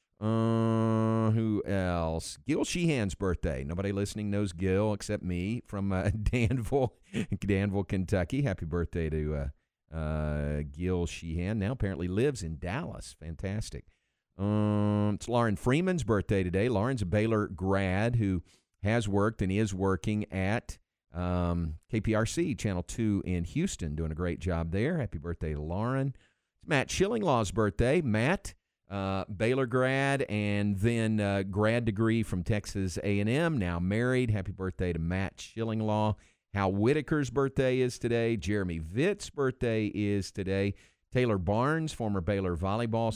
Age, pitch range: 50-69, 95-115 Hz